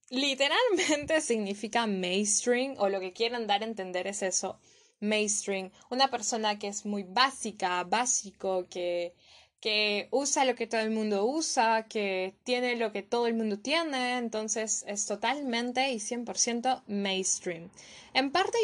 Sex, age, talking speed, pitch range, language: female, 10-29, 145 wpm, 205-260 Hz, Spanish